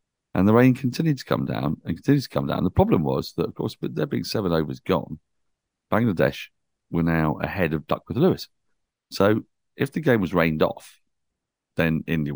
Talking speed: 200 wpm